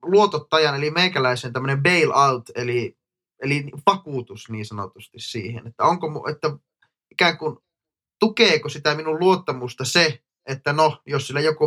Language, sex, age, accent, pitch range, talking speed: Finnish, male, 20-39, native, 120-150 Hz, 135 wpm